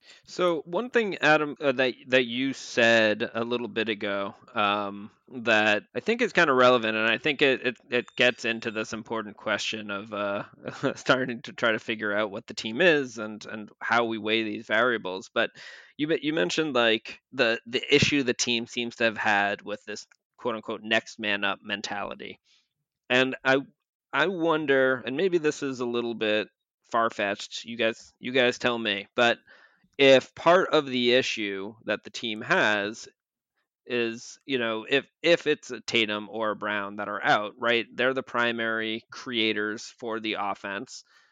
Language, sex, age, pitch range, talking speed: English, male, 20-39, 105-125 Hz, 180 wpm